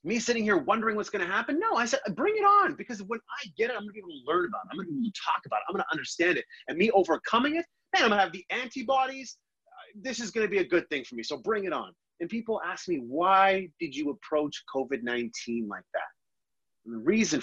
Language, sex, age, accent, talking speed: English, male, 30-49, American, 275 wpm